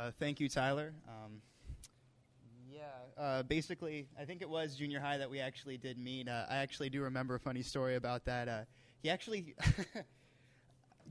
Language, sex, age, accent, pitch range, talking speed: English, male, 20-39, American, 125-155 Hz, 180 wpm